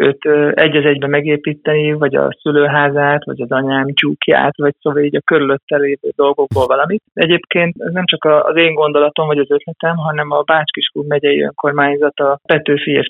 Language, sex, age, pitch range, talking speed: Hungarian, male, 30-49, 140-155 Hz, 155 wpm